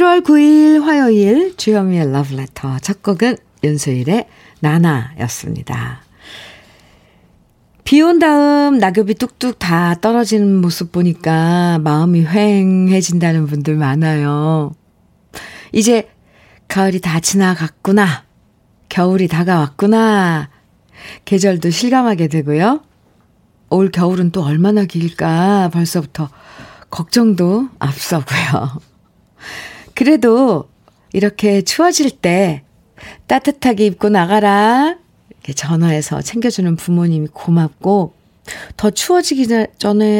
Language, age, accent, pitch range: Korean, 50-69, native, 160-230 Hz